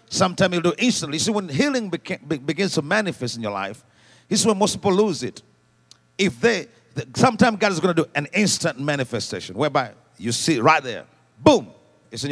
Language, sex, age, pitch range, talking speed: English, male, 50-69, 140-195 Hz, 210 wpm